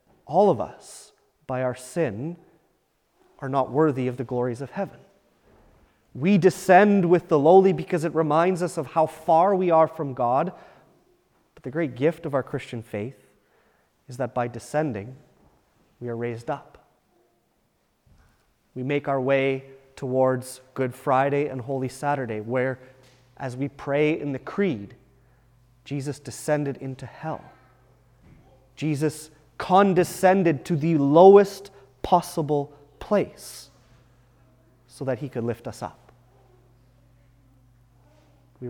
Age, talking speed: 30-49, 125 wpm